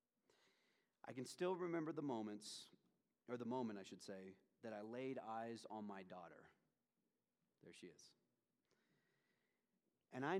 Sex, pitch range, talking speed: male, 110-135 Hz, 140 wpm